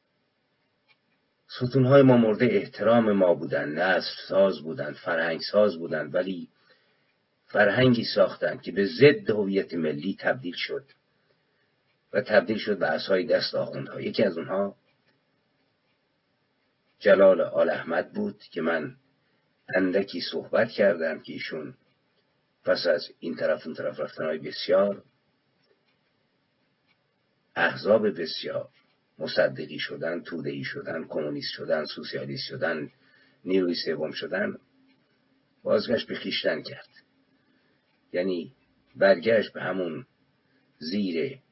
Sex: male